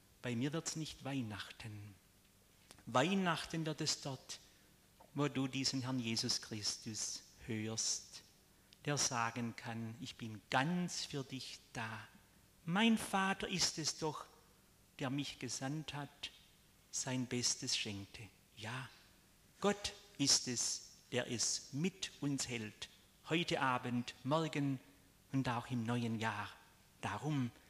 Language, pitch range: German, 110-145 Hz